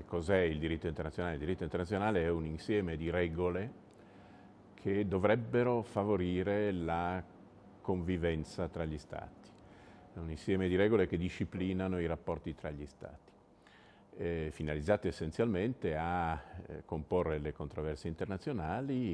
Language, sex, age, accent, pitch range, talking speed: Italian, male, 50-69, native, 80-100 Hz, 130 wpm